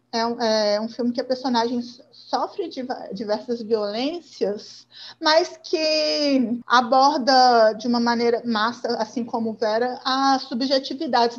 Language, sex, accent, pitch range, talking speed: Portuguese, female, Brazilian, 230-285 Hz, 125 wpm